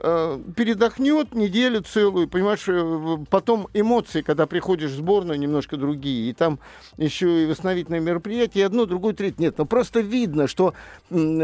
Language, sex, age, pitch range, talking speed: Russian, male, 50-69, 160-210 Hz, 145 wpm